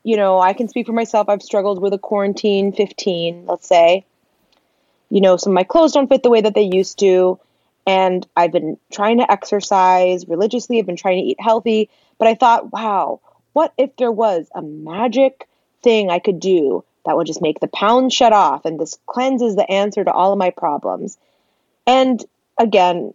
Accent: American